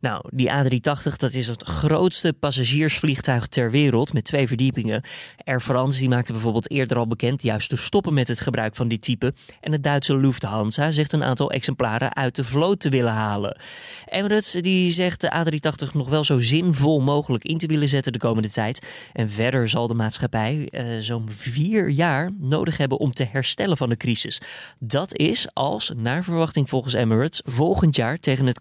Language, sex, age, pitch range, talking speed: Dutch, male, 20-39, 125-155 Hz, 185 wpm